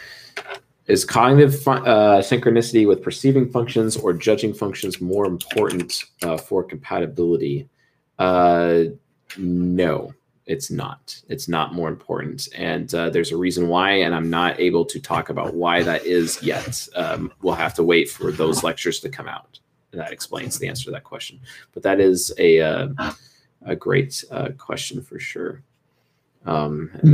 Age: 30-49